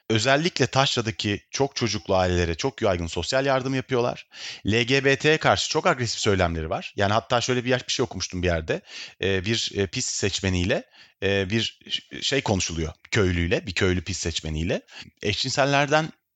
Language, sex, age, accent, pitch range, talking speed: Turkish, male, 40-59, native, 90-130 Hz, 135 wpm